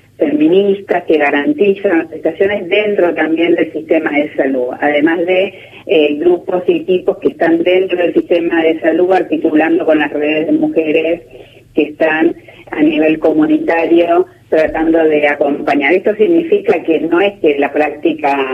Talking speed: 150 wpm